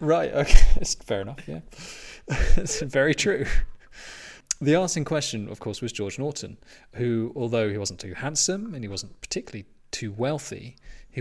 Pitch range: 105-130 Hz